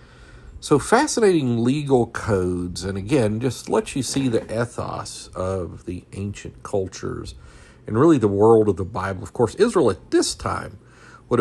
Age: 50-69